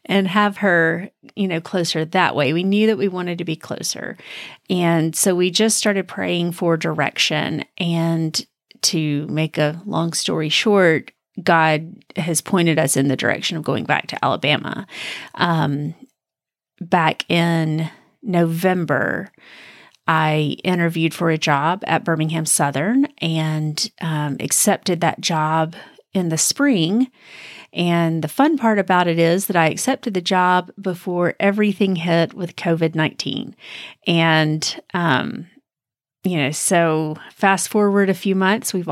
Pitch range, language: 160-195 Hz, English